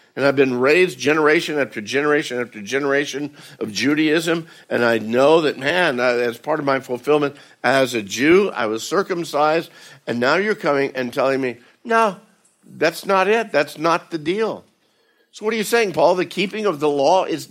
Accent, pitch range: American, 135-170 Hz